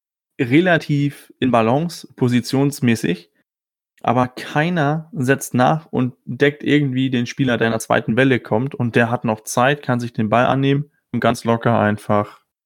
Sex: male